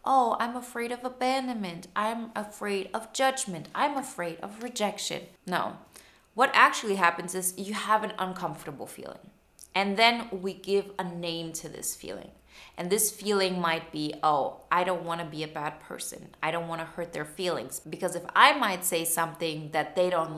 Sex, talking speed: female, 185 wpm